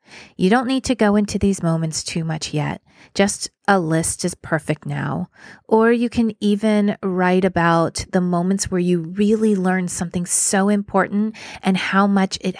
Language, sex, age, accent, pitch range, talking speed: English, female, 30-49, American, 165-205 Hz, 170 wpm